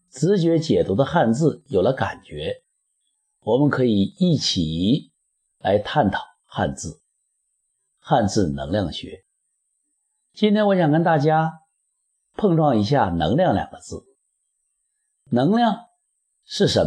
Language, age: Chinese, 50-69